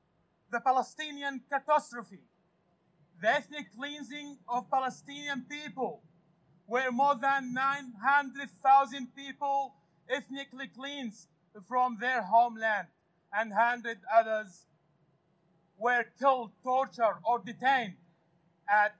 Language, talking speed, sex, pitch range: English, 90 wpm, male, 215-280 Hz